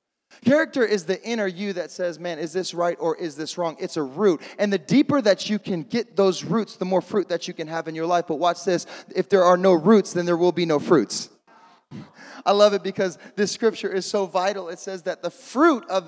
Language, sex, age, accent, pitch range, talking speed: English, male, 20-39, American, 180-230 Hz, 245 wpm